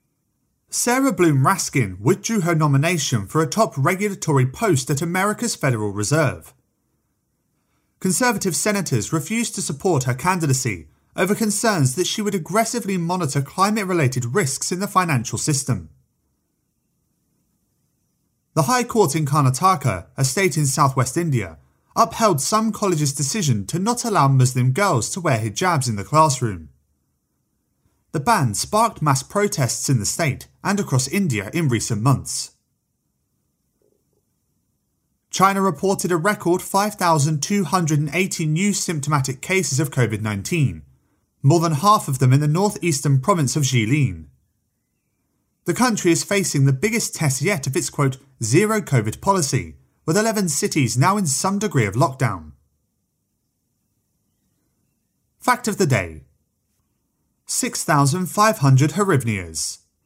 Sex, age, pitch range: male, 30-49, 125-190 Hz